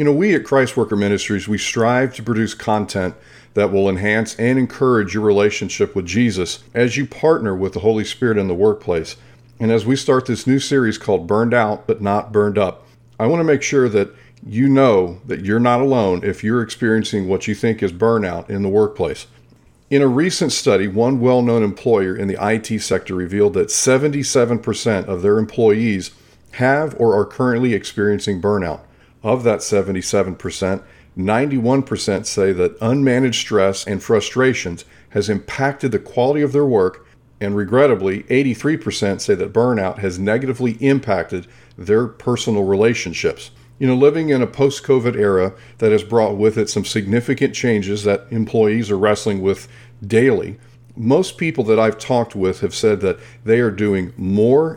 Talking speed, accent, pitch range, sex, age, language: 170 wpm, American, 100-125 Hz, male, 50-69, English